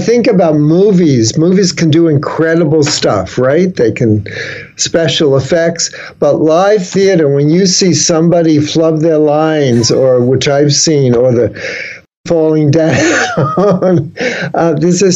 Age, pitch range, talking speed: 60-79, 155-185 Hz, 130 wpm